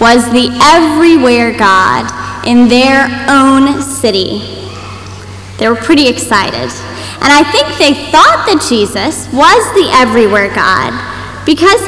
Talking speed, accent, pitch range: 120 wpm, American, 205-320 Hz